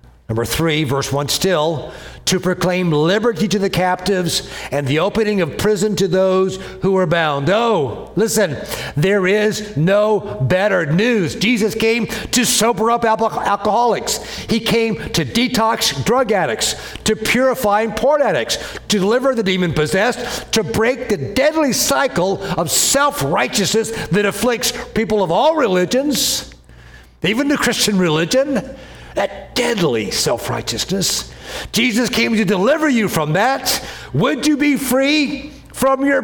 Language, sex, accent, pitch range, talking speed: English, male, American, 185-250 Hz, 135 wpm